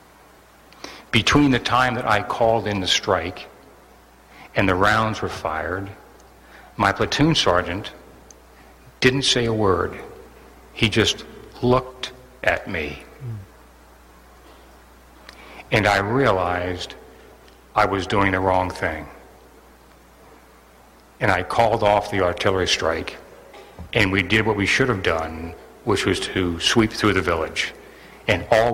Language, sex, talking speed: English, male, 125 wpm